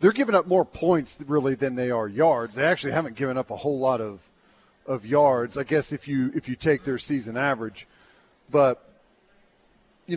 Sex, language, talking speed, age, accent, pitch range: male, English, 195 wpm, 40-59, American, 125-165 Hz